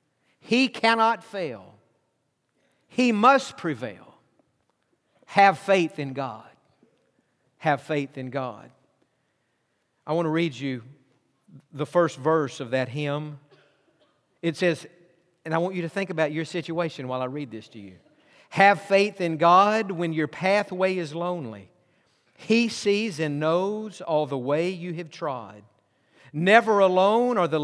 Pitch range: 135-190 Hz